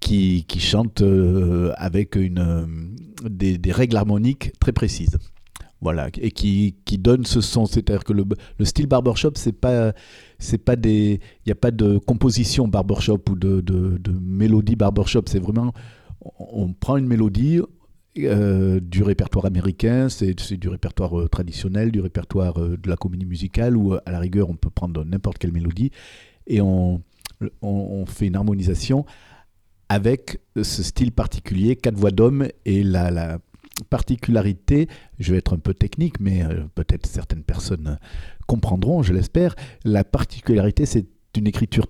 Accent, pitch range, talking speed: French, 95-115 Hz, 160 wpm